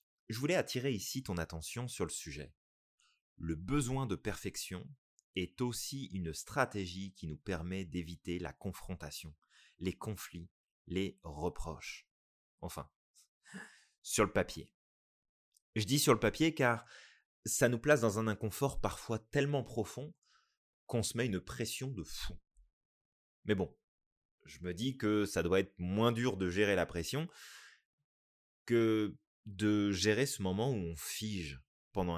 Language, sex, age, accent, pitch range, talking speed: French, male, 30-49, French, 90-125 Hz, 145 wpm